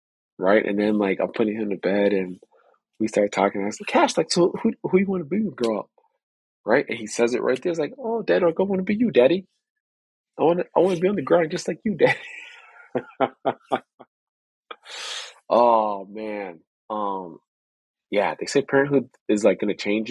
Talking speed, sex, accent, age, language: 205 wpm, male, American, 20-39, English